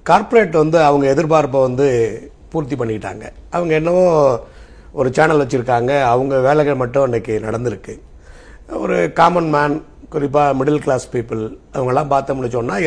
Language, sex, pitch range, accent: Tamil, male, 135-180 Hz, native